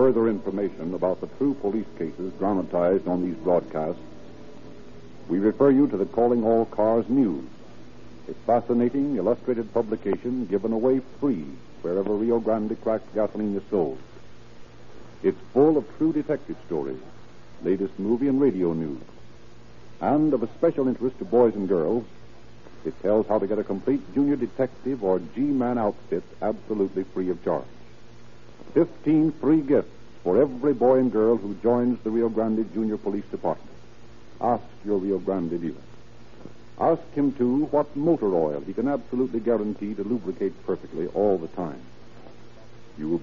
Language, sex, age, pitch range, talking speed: English, male, 60-79, 100-130 Hz, 150 wpm